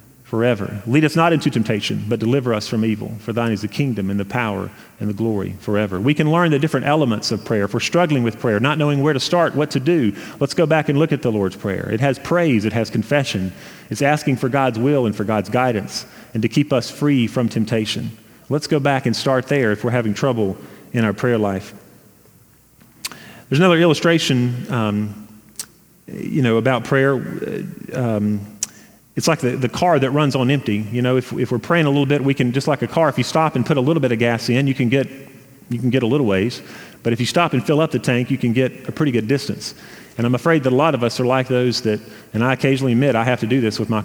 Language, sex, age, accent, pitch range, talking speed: English, male, 40-59, American, 110-145 Hz, 245 wpm